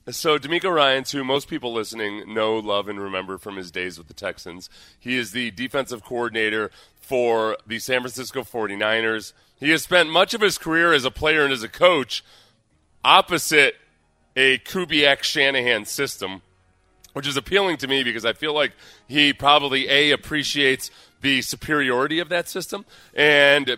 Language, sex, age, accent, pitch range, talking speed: English, female, 30-49, American, 110-145 Hz, 160 wpm